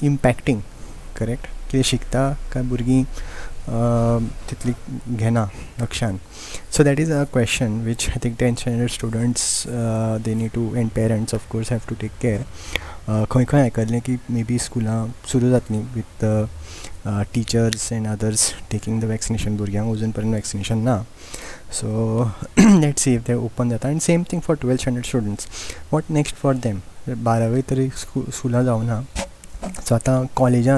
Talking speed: 145 wpm